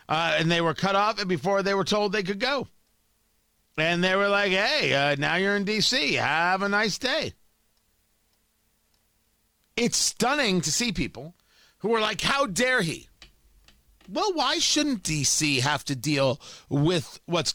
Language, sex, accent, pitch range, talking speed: English, male, American, 155-220 Hz, 160 wpm